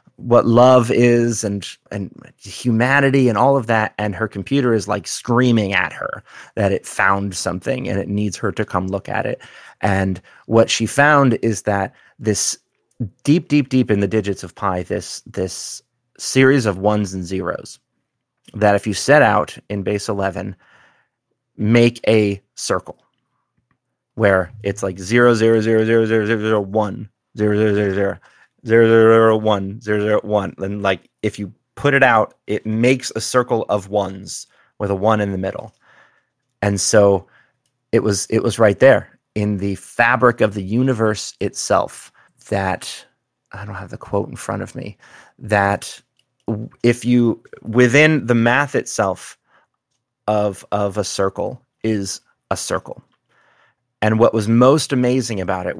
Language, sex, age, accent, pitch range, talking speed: English, male, 30-49, American, 100-120 Hz, 165 wpm